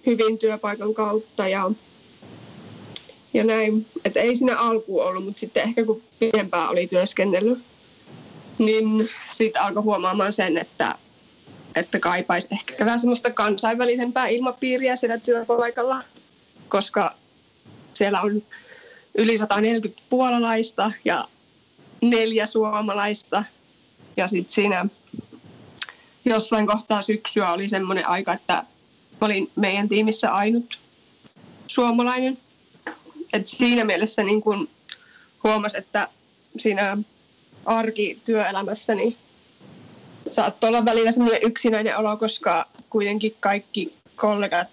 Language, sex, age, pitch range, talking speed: Finnish, female, 20-39, 205-230 Hz, 105 wpm